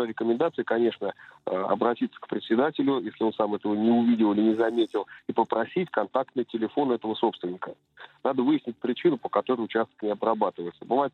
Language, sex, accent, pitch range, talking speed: Russian, male, native, 110-130 Hz, 155 wpm